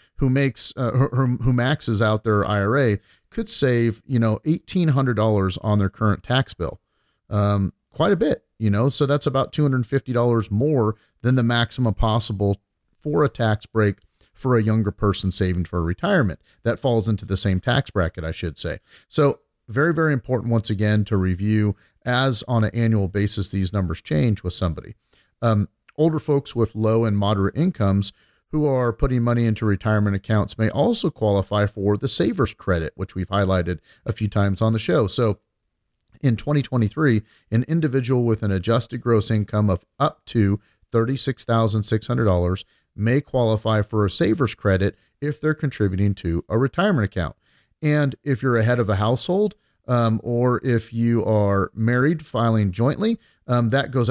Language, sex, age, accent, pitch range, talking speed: English, male, 40-59, American, 100-130 Hz, 165 wpm